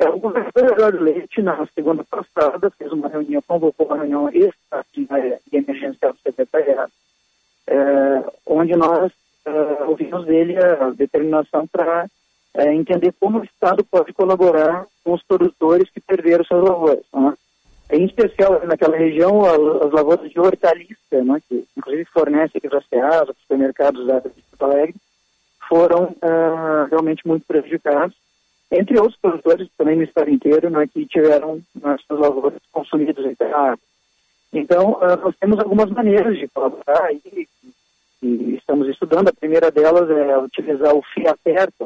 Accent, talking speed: Brazilian, 145 wpm